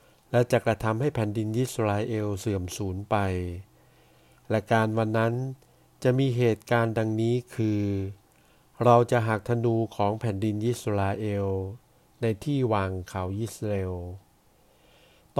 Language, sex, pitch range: Thai, male, 100-125 Hz